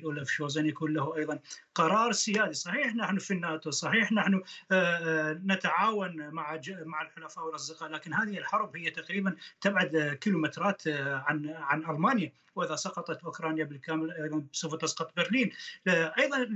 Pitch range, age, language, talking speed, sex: 155-210 Hz, 30-49, Arabic, 140 wpm, male